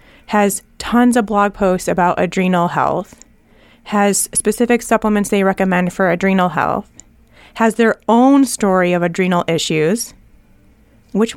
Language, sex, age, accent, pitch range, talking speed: English, female, 30-49, American, 190-230 Hz, 125 wpm